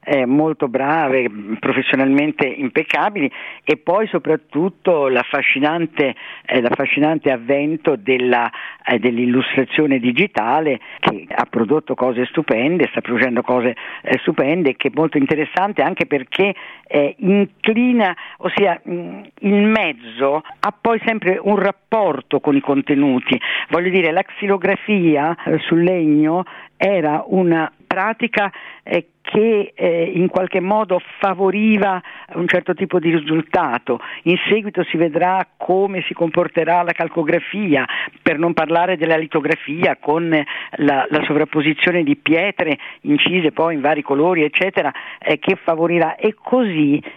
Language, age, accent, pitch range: Italian, 50-69, native, 135-185 Hz